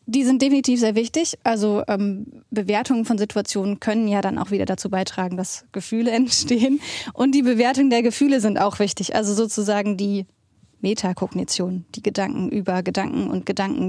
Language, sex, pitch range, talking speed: German, female, 200-235 Hz, 165 wpm